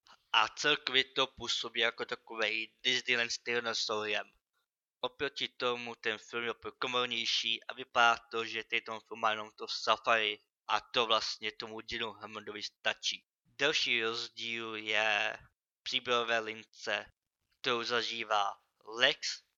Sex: male